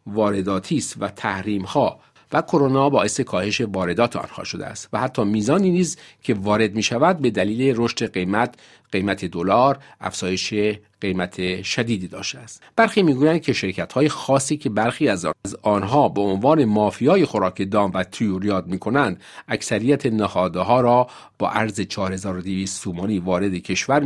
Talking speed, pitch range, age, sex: 145 wpm, 95-130 Hz, 50-69, male